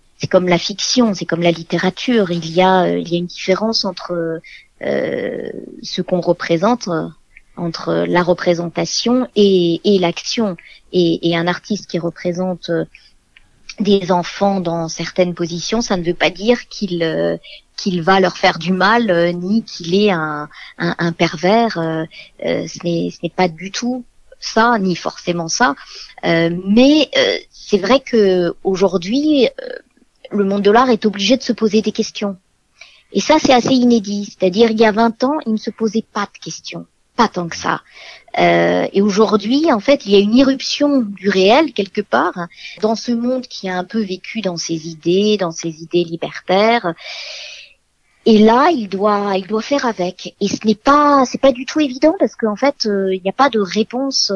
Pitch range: 175-235 Hz